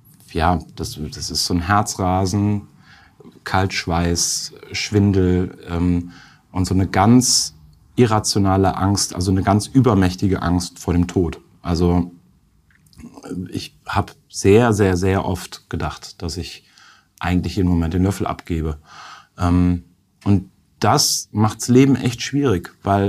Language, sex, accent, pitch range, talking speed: German, male, German, 90-105 Hz, 125 wpm